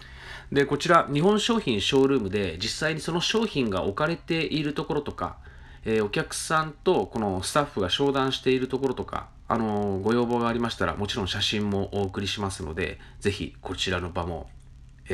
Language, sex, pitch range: Japanese, male, 90-140 Hz